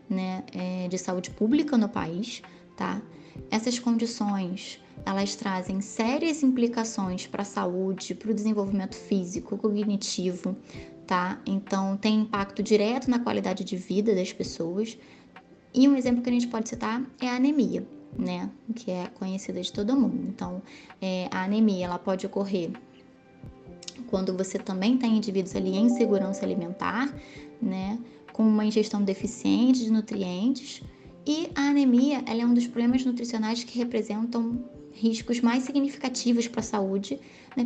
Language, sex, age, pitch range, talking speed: Portuguese, female, 20-39, 190-235 Hz, 145 wpm